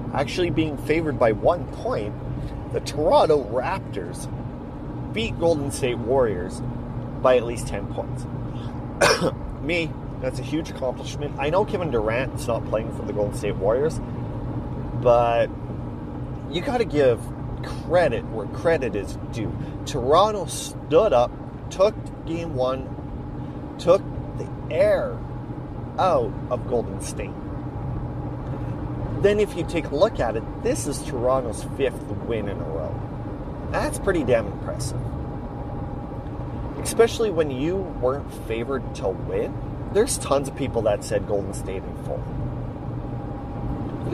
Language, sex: English, male